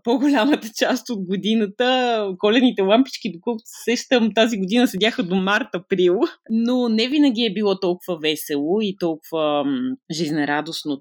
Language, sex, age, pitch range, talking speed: Bulgarian, female, 20-39, 170-235 Hz, 130 wpm